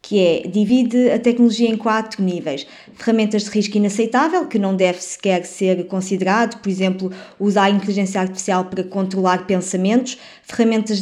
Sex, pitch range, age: female, 195-235 Hz, 20-39